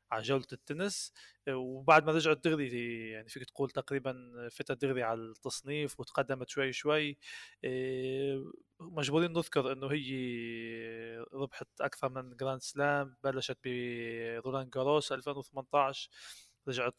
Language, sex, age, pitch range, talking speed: Arabic, male, 20-39, 125-150 Hz, 110 wpm